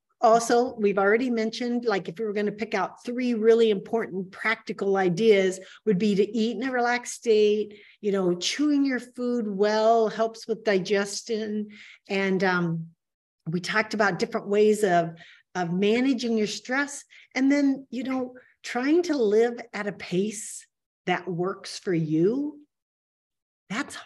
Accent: American